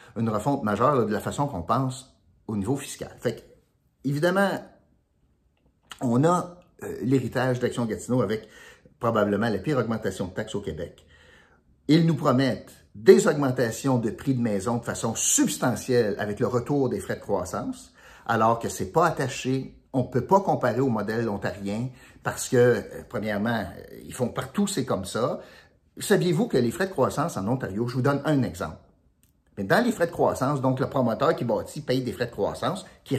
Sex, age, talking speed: male, 50-69, 185 wpm